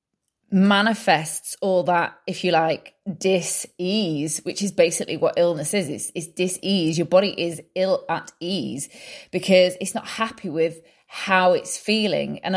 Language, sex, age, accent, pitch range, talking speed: English, female, 20-39, British, 165-205 Hz, 150 wpm